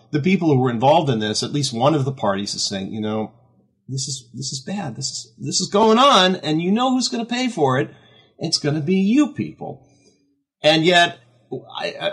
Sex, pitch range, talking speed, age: male, 110-150 Hz, 230 wpm, 40-59